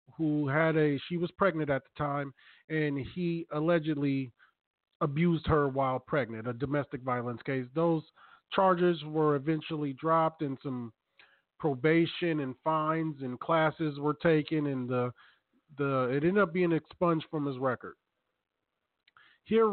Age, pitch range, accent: 40-59, 145-180 Hz, American